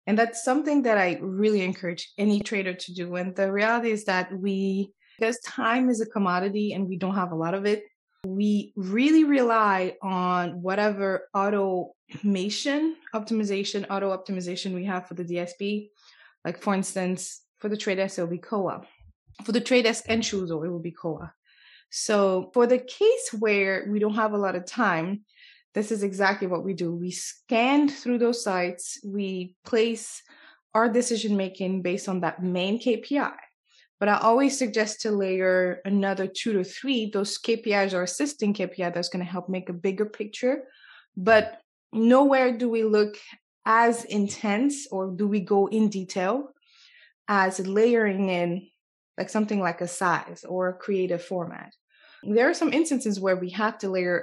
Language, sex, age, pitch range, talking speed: English, female, 20-39, 185-225 Hz, 170 wpm